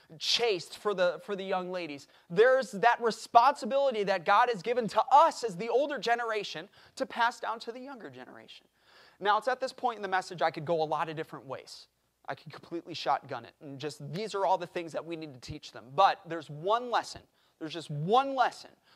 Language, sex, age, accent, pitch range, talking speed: English, male, 30-49, American, 160-235 Hz, 215 wpm